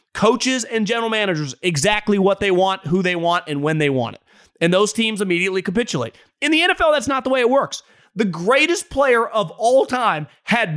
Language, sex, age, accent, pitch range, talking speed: English, male, 30-49, American, 180-245 Hz, 205 wpm